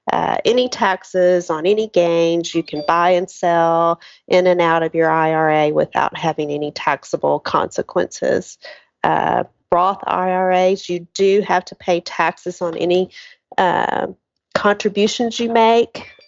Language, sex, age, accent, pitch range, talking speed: English, female, 40-59, American, 165-195 Hz, 135 wpm